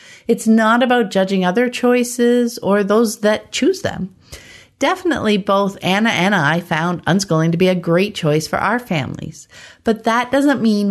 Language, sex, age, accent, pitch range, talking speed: English, female, 50-69, American, 170-235 Hz, 165 wpm